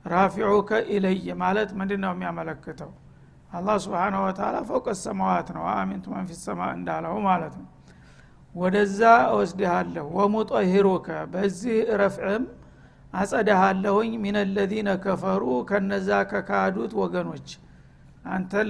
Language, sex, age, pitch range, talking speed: Amharic, male, 60-79, 185-210 Hz, 95 wpm